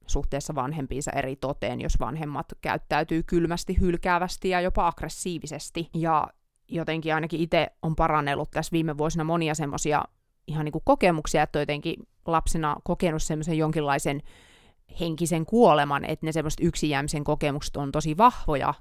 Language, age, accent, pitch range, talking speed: Finnish, 30-49, native, 145-165 Hz, 135 wpm